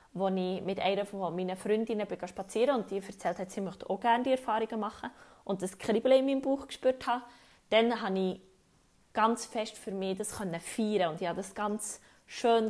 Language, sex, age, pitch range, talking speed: German, female, 20-39, 185-220 Hz, 200 wpm